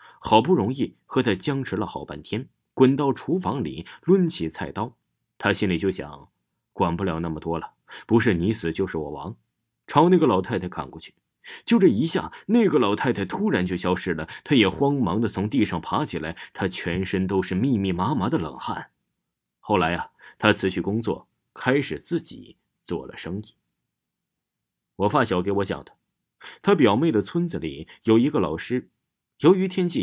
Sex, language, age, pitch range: male, Chinese, 30-49, 85-130 Hz